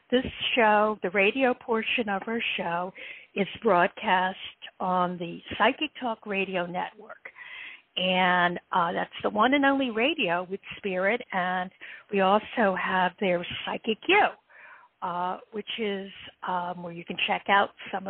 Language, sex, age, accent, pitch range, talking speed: English, female, 50-69, American, 190-255 Hz, 145 wpm